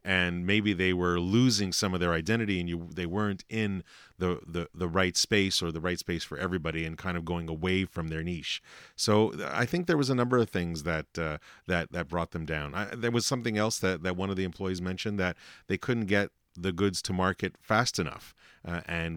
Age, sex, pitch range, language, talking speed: 40-59, male, 85-105 Hz, English, 225 wpm